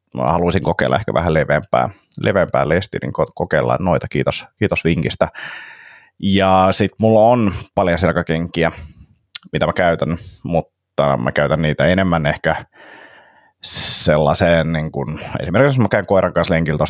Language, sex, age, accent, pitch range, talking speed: Finnish, male, 30-49, native, 75-95 Hz, 140 wpm